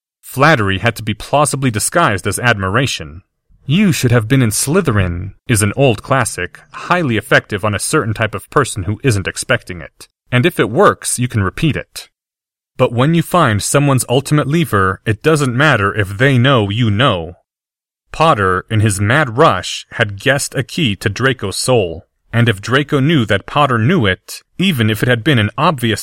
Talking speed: 185 wpm